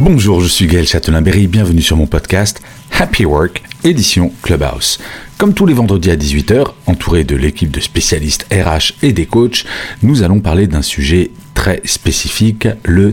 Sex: male